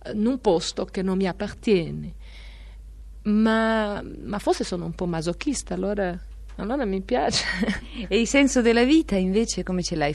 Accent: native